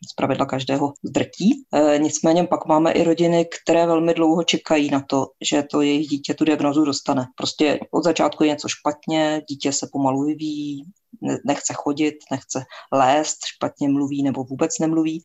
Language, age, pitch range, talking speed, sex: Czech, 20-39, 140-160 Hz, 155 wpm, female